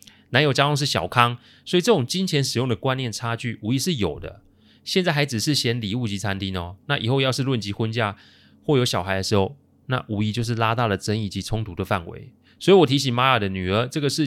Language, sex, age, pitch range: Chinese, male, 30-49, 105-145 Hz